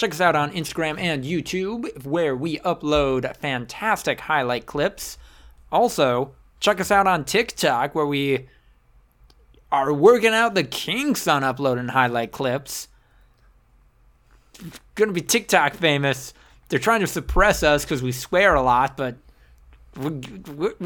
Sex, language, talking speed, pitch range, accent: male, English, 130 wpm, 125-175 Hz, American